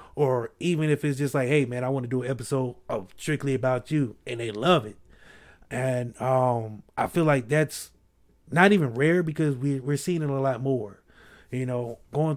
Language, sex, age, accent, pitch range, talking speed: English, male, 30-49, American, 120-140 Hz, 205 wpm